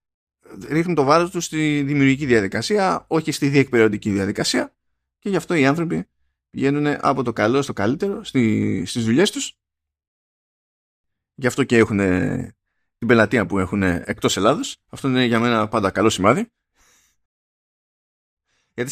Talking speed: 135 wpm